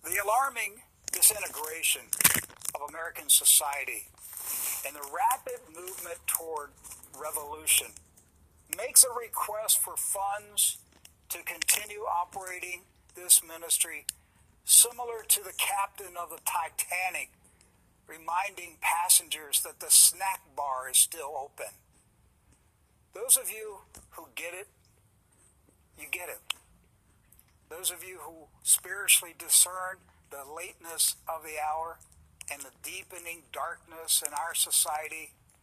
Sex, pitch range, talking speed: male, 135-195 Hz, 110 wpm